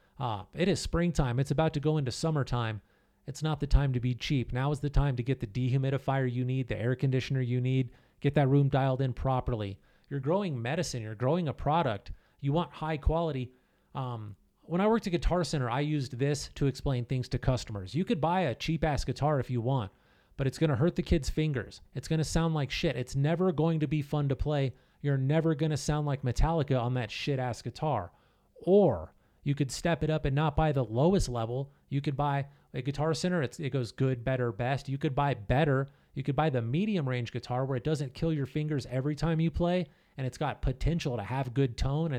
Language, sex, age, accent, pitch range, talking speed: English, male, 30-49, American, 125-155 Hz, 230 wpm